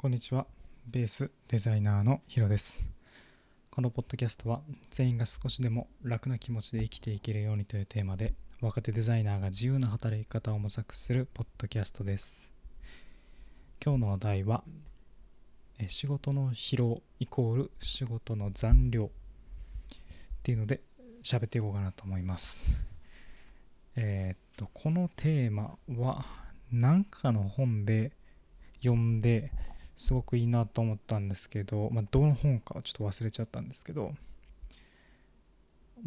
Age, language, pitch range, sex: 20-39, Japanese, 100-125 Hz, male